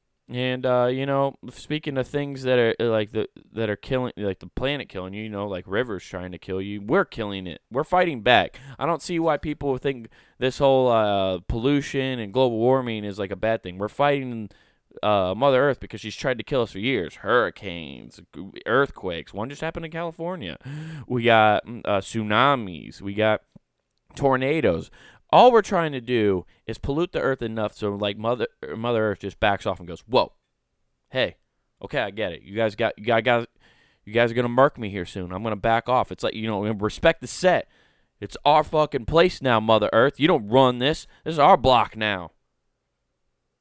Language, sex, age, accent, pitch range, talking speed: English, male, 20-39, American, 105-135 Hz, 200 wpm